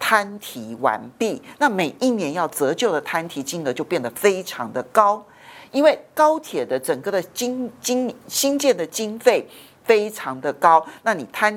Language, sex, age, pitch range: Chinese, male, 50-69, 155-245 Hz